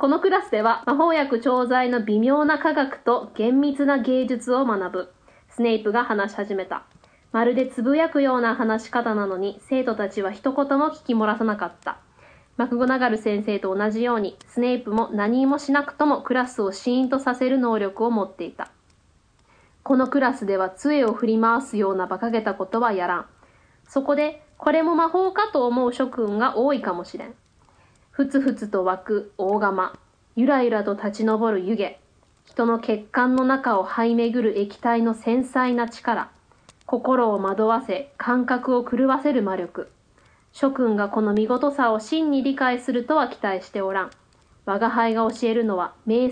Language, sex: Japanese, female